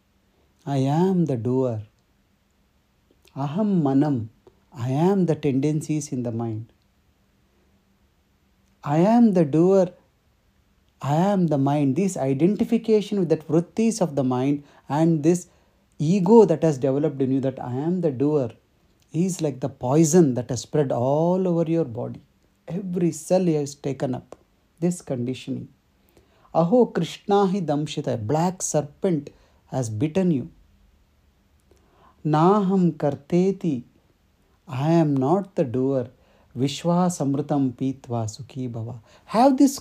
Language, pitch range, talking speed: English, 115-175 Hz, 125 wpm